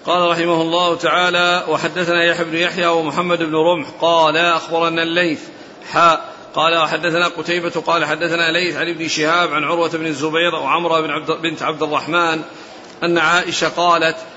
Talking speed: 145 wpm